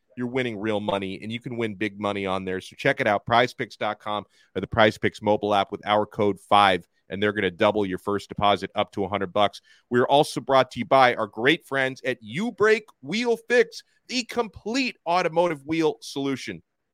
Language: English